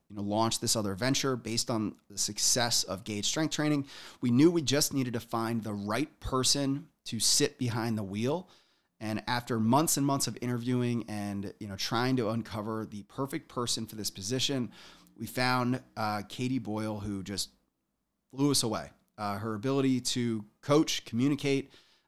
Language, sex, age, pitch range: English, male, 30-49, 105-130 Hz